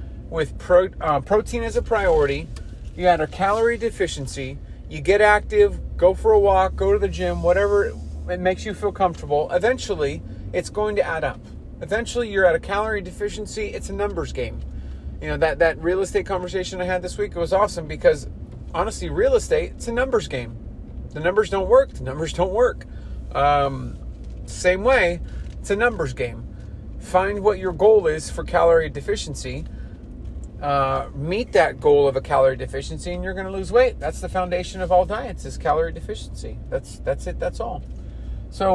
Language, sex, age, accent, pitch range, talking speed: English, male, 30-49, American, 145-215 Hz, 185 wpm